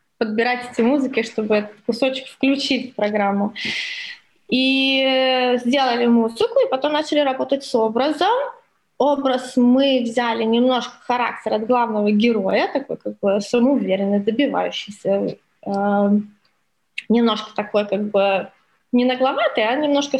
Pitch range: 220-270 Hz